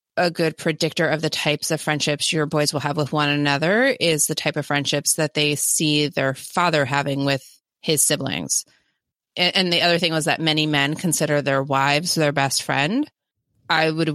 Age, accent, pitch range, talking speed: 30-49, American, 135-160 Hz, 190 wpm